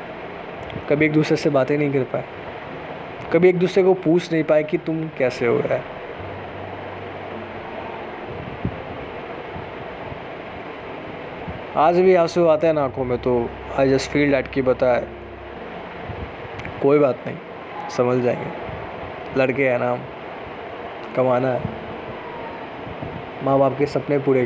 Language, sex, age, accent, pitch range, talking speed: Hindi, male, 20-39, native, 140-160 Hz, 125 wpm